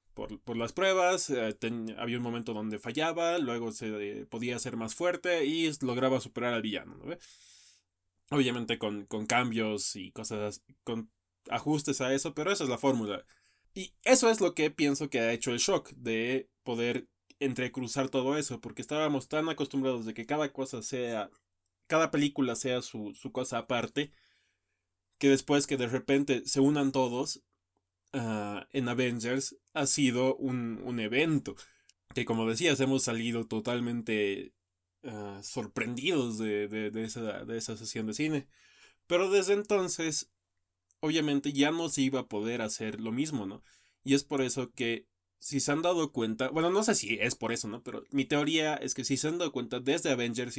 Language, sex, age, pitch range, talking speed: Spanish, male, 20-39, 110-140 Hz, 170 wpm